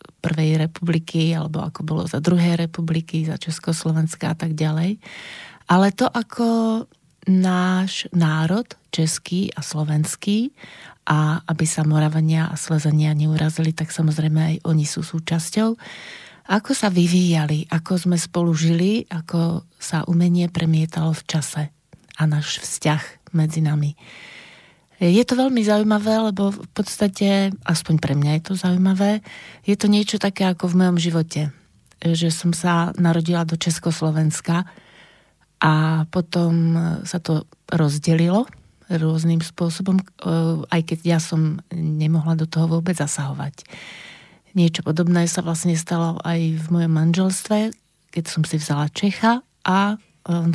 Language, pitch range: Slovak, 160-185 Hz